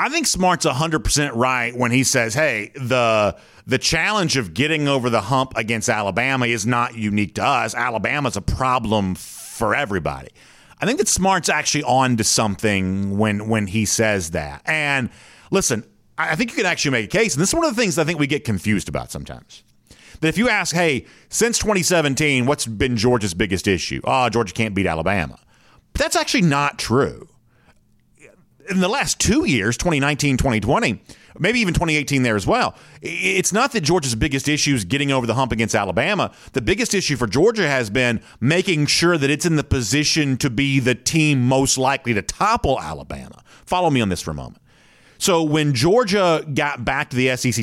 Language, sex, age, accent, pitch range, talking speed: English, male, 40-59, American, 110-155 Hz, 190 wpm